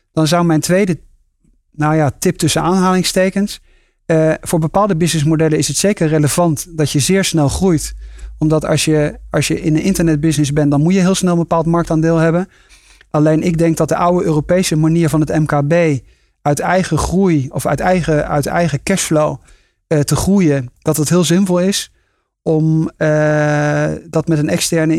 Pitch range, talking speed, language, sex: 150-170 Hz, 170 wpm, Dutch, male